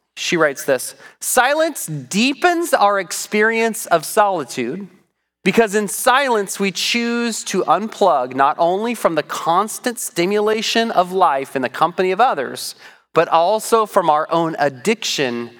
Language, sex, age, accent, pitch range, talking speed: English, male, 30-49, American, 135-210 Hz, 135 wpm